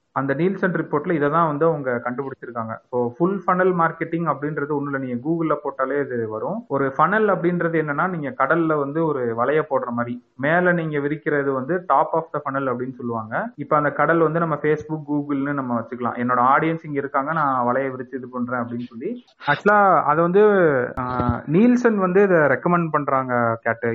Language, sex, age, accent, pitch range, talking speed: Tamil, male, 30-49, native, 135-170 Hz, 160 wpm